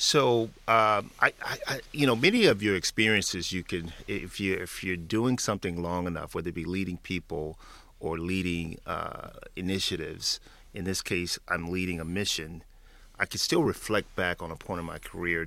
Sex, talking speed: male, 185 wpm